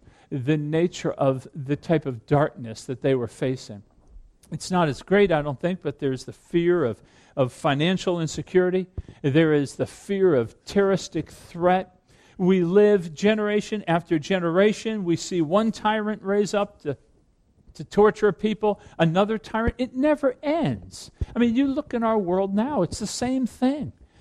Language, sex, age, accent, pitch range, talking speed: English, male, 50-69, American, 155-235 Hz, 160 wpm